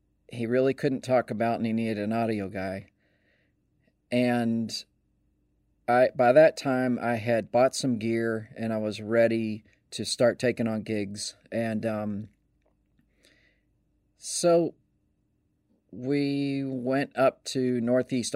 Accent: American